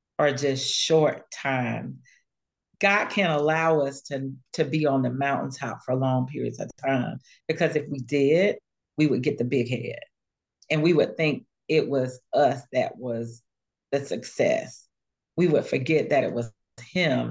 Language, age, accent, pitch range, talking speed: English, 40-59, American, 125-150 Hz, 165 wpm